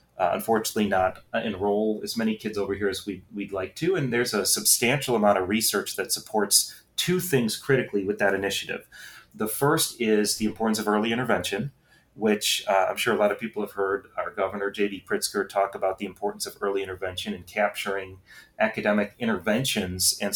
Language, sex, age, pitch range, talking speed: English, male, 30-49, 100-115 Hz, 190 wpm